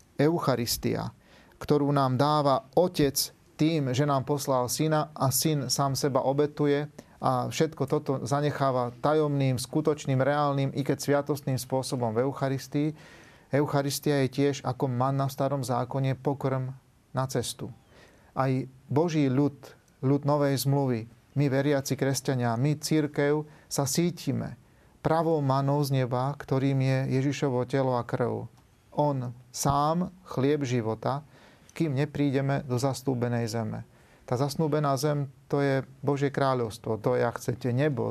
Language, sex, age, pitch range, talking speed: Slovak, male, 40-59, 125-145 Hz, 130 wpm